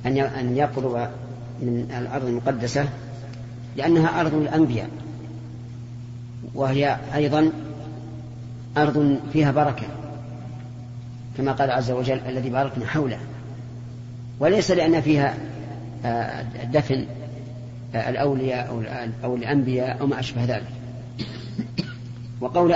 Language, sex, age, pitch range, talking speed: Arabic, female, 40-59, 120-145 Hz, 85 wpm